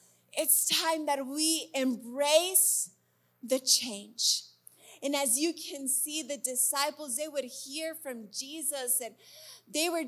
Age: 30-49